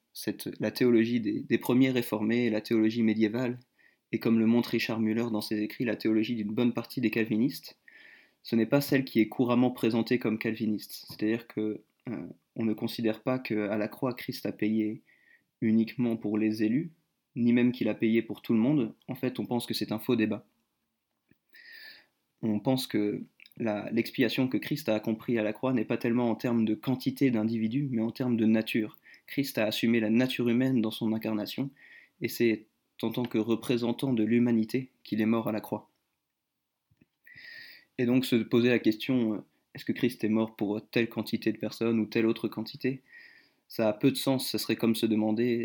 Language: French